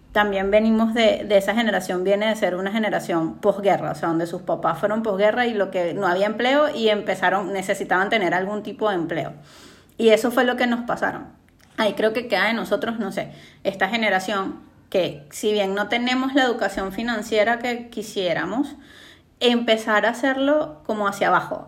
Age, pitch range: 30-49, 200-240 Hz